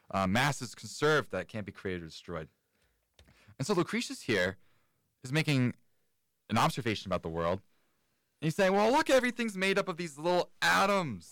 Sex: male